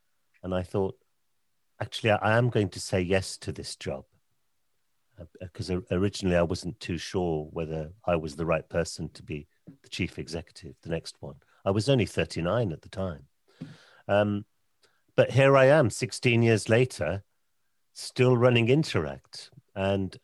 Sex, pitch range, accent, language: male, 85-105 Hz, British, English